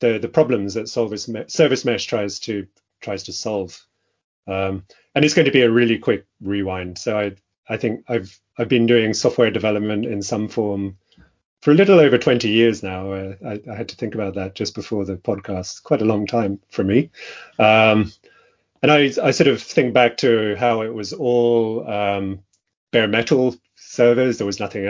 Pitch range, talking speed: 95-115 Hz, 195 wpm